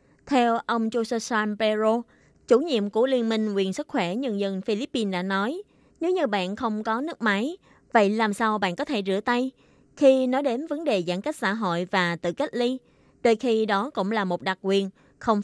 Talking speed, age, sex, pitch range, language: 210 wpm, 20-39, female, 190-245 Hz, Vietnamese